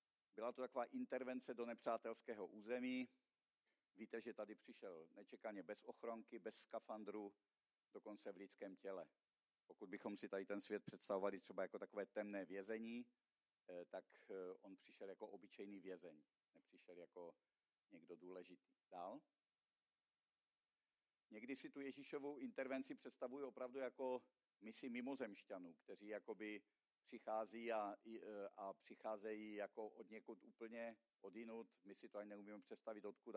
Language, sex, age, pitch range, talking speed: Czech, male, 50-69, 100-115 Hz, 125 wpm